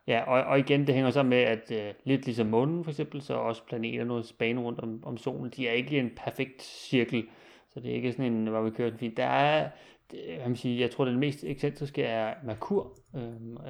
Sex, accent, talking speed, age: male, native, 230 wpm, 30-49